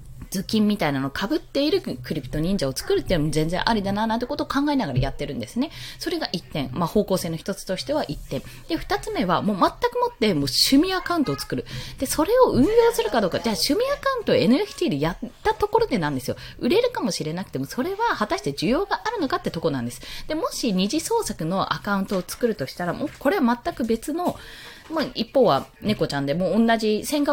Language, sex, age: Japanese, female, 20-39